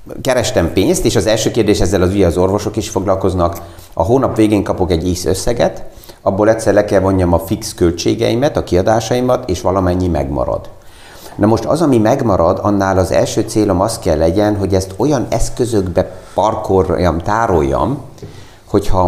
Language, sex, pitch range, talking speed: Hungarian, male, 90-110 Hz, 165 wpm